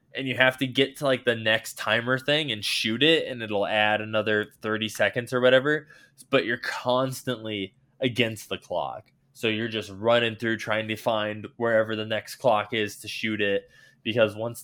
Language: English